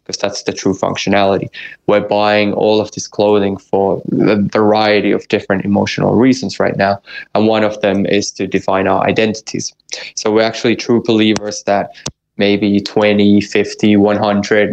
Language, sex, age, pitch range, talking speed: Finnish, male, 20-39, 100-110 Hz, 155 wpm